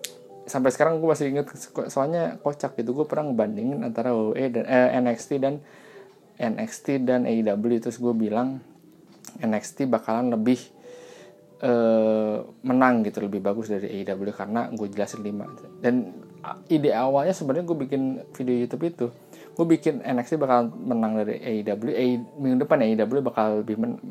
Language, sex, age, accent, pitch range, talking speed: Indonesian, male, 20-39, native, 115-140 Hz, 150 wpm